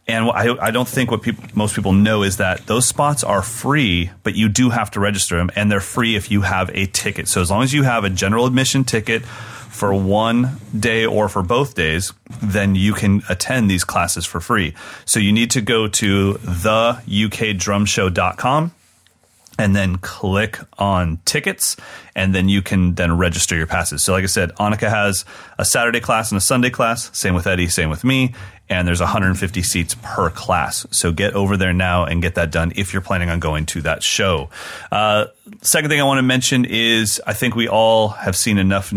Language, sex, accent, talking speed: English, male, American, 200 wpm